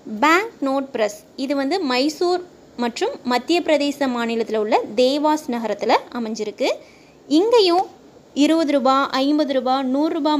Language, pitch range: Tamil, 235-305 Hz